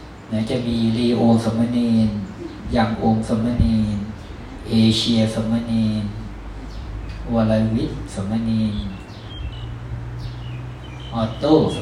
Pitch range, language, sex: 105-120 Hz, Thai, male